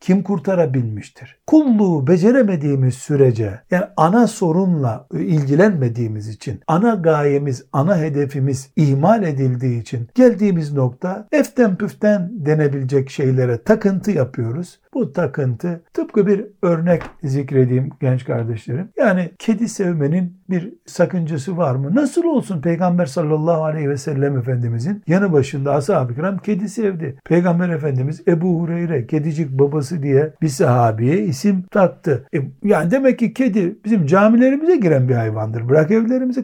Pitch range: 135-200 Hz